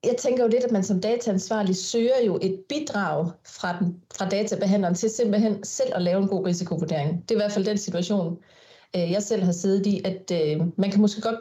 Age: 30-49